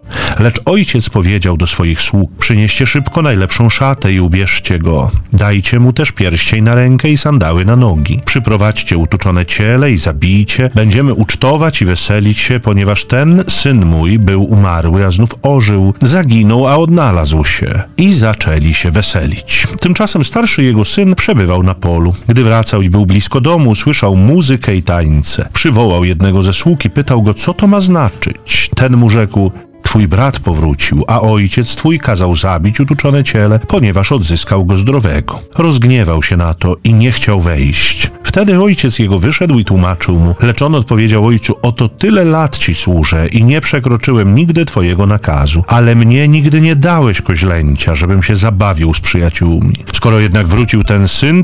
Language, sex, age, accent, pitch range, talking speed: Polish, male, 40-59, native, 95-135 Hz, 165 wpm